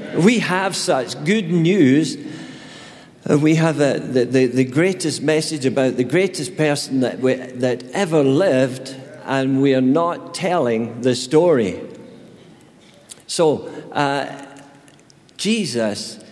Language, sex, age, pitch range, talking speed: English, male, 50-69, 130-160 Hz, 105 wpm